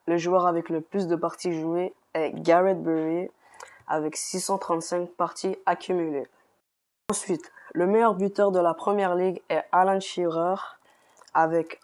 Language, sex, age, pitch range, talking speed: French, female, 20-39, 170-200 Hz, 135 wpm